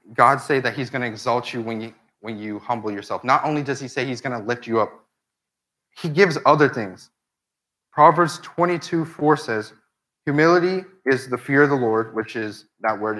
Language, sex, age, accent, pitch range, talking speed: English, male, 30-49, American, 115-155 Hz, 200 wpm